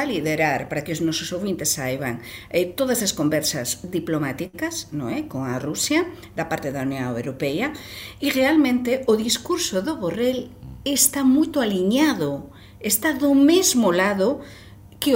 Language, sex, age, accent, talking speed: Portuguese, female, 50-69, Spanish, 145 wpm